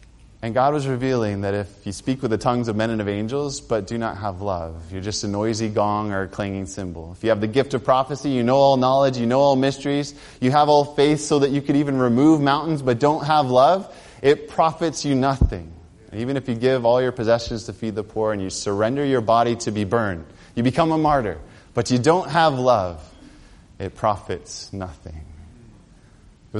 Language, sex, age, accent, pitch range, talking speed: English, male, 20-39, American, 110-135 Hz, 215 wpm